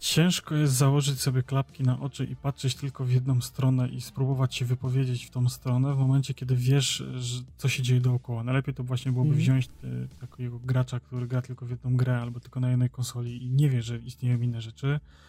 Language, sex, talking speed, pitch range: Polish, male, 210 wpm, 125-140 Hz